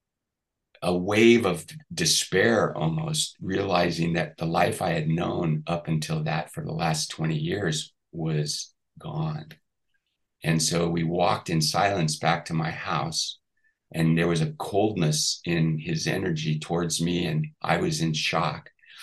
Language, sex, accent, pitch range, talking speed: English, male, American, 80-110 Hz, 150 wpm